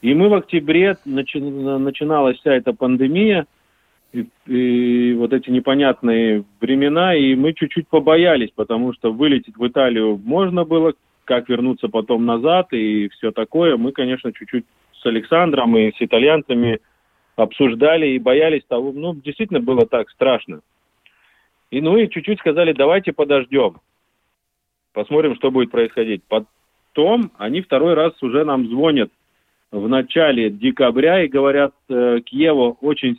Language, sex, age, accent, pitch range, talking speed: Russian, male, 30-49, native, 120-160 Hz, 135 wpm